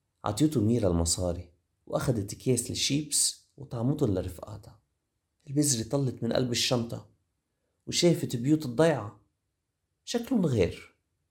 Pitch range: 95-135 Hz